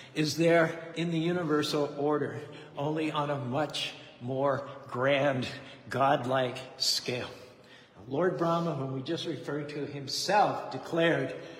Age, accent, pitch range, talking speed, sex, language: 60-79, American, 130-155 Hz, 120 wpm, male, English